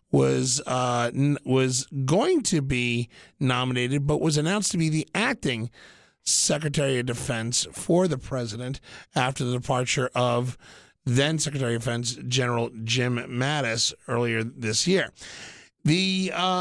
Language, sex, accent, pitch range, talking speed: English, male, American, 130-180 Hz, 135 wpm